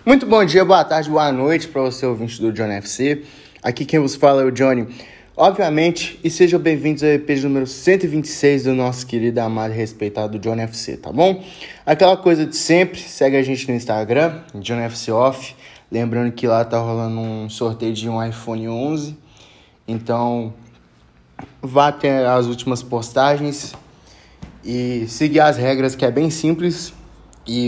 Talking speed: 165 wpm